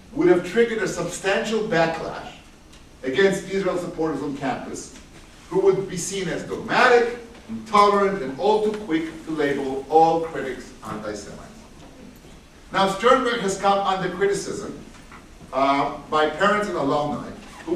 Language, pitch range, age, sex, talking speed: English, 160-215 Hz, 50-69, male, 130 wpm